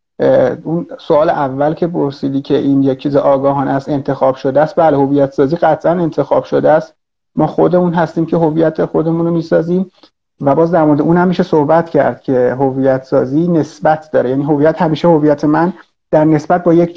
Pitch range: 140-165 Hz